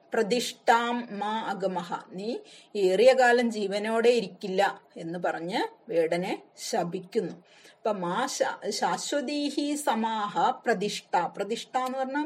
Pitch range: 190-240 Hz